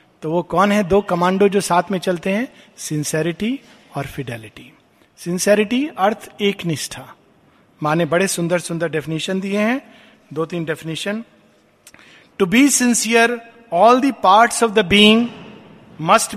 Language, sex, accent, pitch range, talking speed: Hindi, male, native, 160-225 Hz, 135 wpm